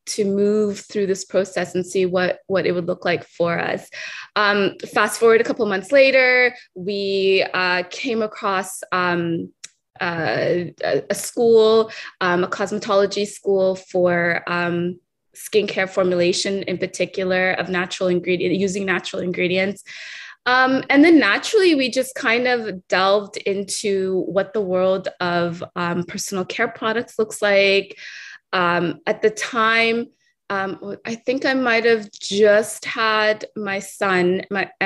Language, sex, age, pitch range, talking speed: English, female, 20-39, 180-215 Hz, 140 wpm